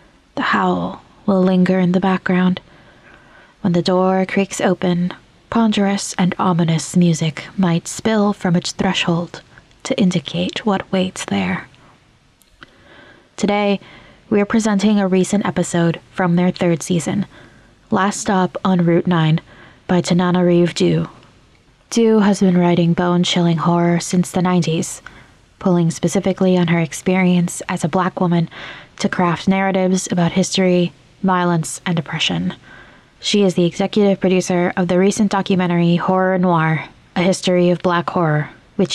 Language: English